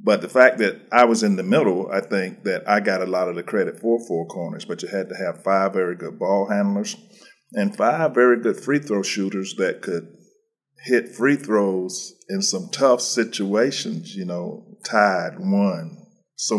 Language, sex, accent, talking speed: English, male, American, 190 wpm